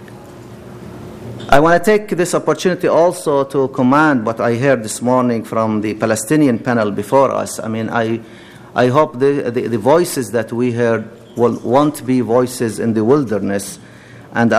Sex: male